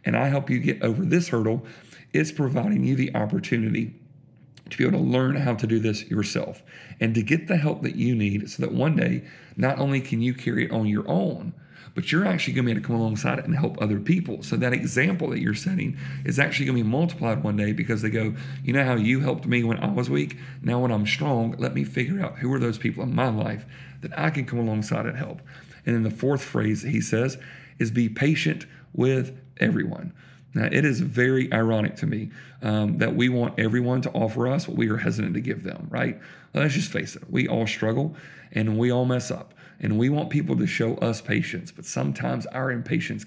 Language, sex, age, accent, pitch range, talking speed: English, male, 40-59, American, 115-155 Hz, 230 wpm